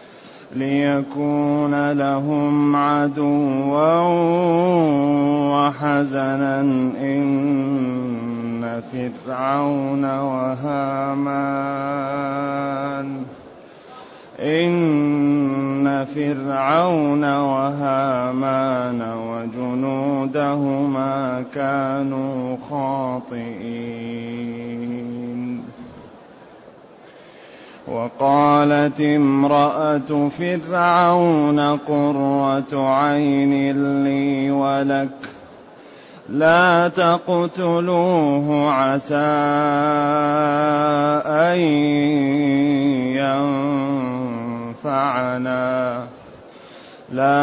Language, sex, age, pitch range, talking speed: Arabic, male, 30-49, 135-145 Hz, 35 wpm